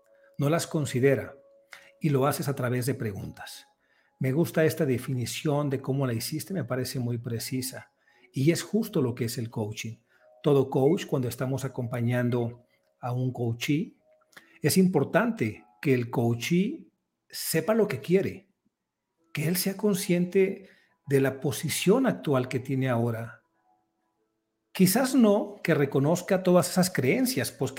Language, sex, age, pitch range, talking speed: Spanish, male, 50-69, 120-160 Hz, 140 wpm